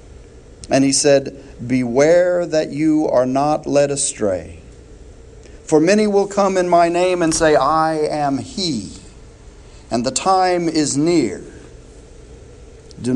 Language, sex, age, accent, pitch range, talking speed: English, male, 50-69, American, 120-160 Hz, 130 wpm